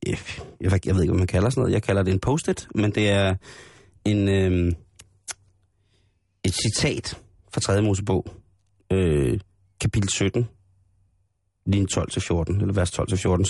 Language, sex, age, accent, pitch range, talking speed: Danish, male, 30-49, native, 95-120 Hz, 140 wpm